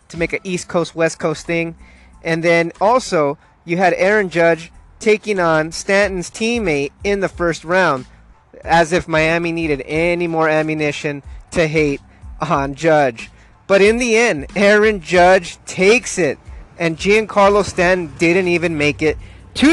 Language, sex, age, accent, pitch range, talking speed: English, male, 30-49, American, 155-190 Hz, 150 wpm